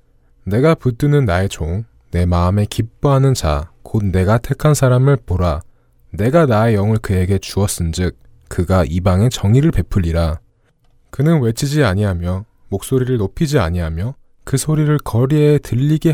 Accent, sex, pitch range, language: native, male, 90-140 Hz, Korean